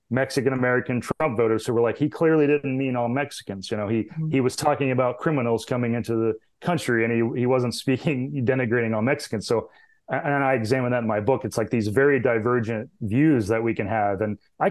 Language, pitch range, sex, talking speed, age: English, 115-135 Hz, male, 215 wpm, 30-49